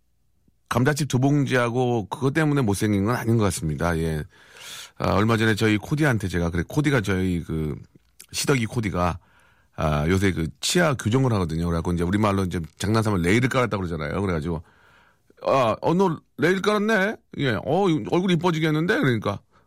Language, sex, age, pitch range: Korean, male, 40-59, 95-145 Hz